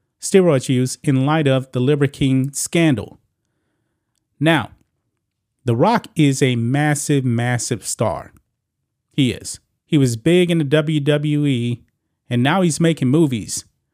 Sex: male